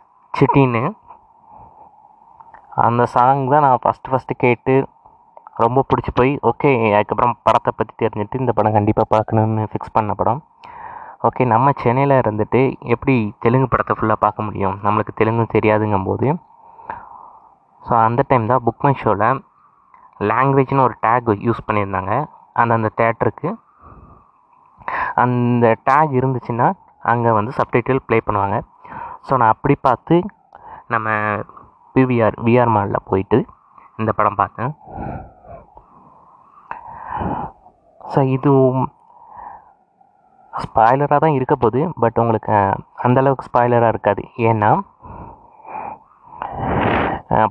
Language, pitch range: Tamil, 110-185 Hz